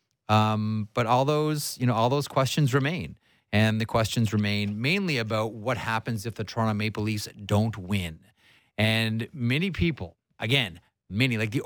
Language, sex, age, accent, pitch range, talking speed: English, male, 30-49, American, 100-125 Hz, 165 wpm